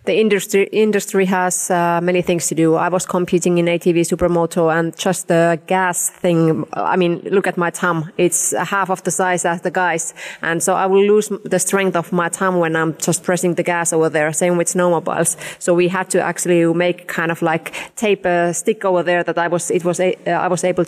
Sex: female